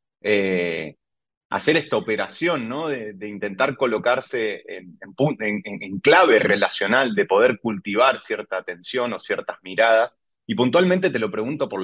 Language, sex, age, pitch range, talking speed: Spanish, male, 30-49, 100-125 Hz, 135 wpm